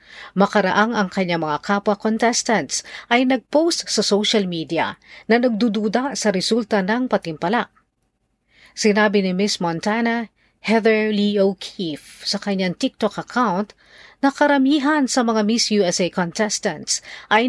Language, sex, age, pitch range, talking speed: Filipino, female, 40-59, 185-230 Hz, 125 wpm